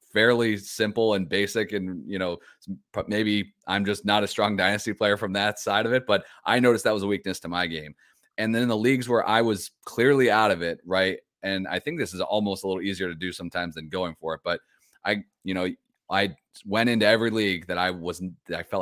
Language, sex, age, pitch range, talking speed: English, male, 30-49, 90-110 Hz, 235 wpm